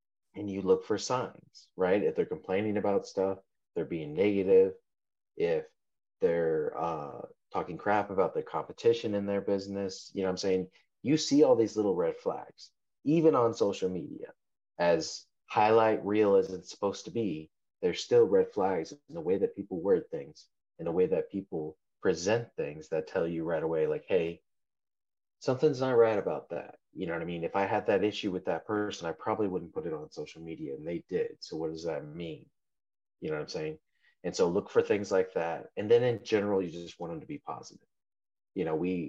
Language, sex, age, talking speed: English, male, 30-49, 205 wpm